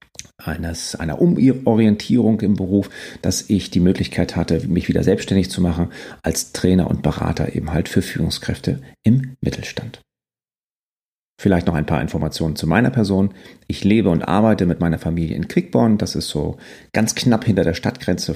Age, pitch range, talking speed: 40-59, 90-115 Hz, 165 wpm